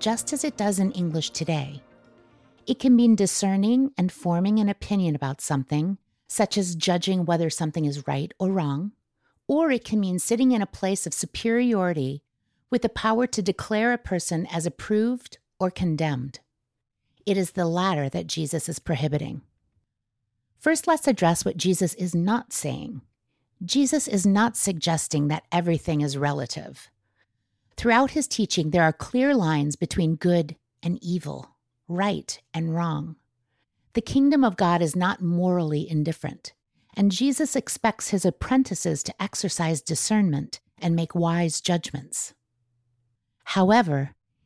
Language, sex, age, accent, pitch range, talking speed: English, female, 50-69, American, 150-205 Hz, 145 wpm